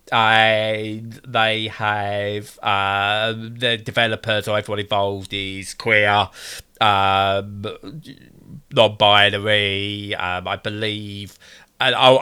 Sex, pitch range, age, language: male, 105-130 Hz, 20-39, English